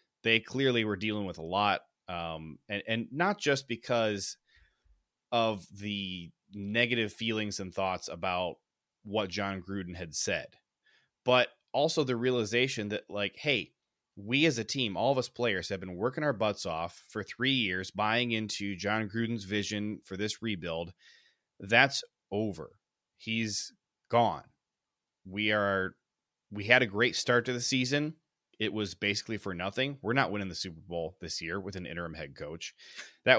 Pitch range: 95-120 Hz